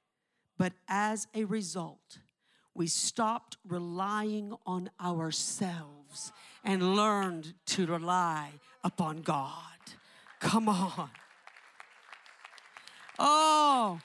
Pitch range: 210-340 Hz